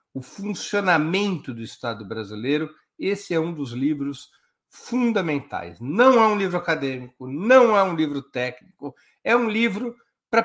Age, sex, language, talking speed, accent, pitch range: 60-79, male, Portuguese, 145 wpm, Brazilian, 145-210 Hz